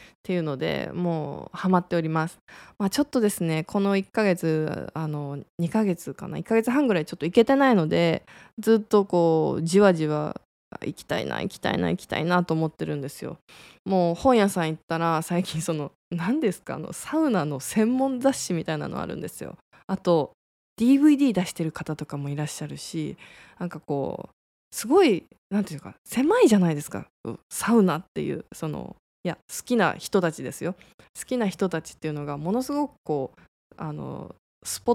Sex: female